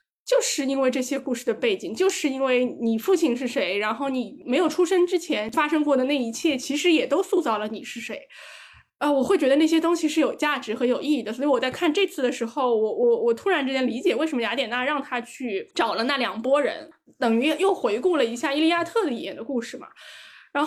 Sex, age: female, 20-39